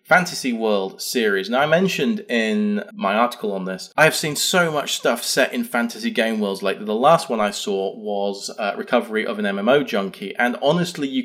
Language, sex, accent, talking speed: English, male, British, 205 wpm